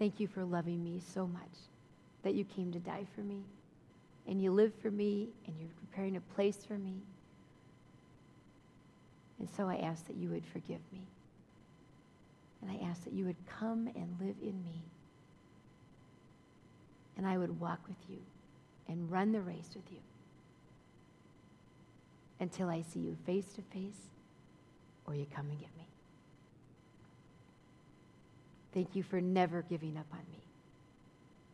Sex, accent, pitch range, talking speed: female, American, 170-205 Hz, 150 wpm